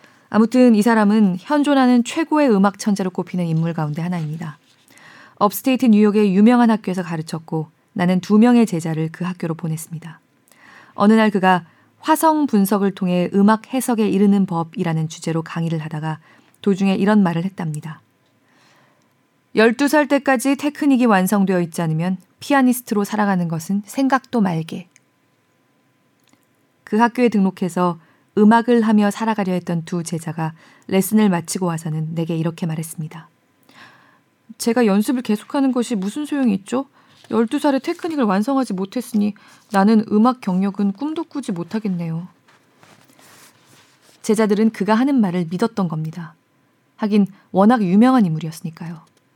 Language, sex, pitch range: Korean, female, 170-230 Hz